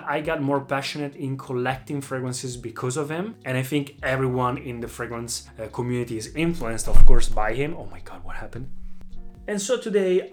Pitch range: 125-160 Hz